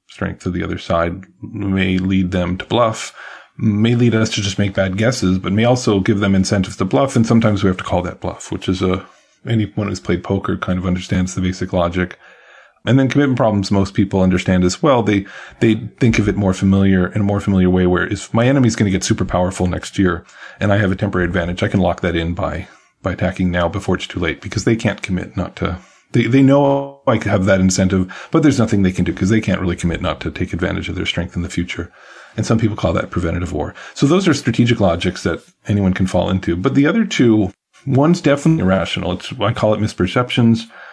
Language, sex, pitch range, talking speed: English, male, 90-110 Hz, 235 wpm